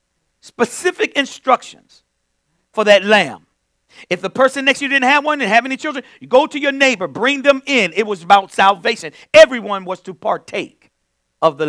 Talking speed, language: 185 wpm, English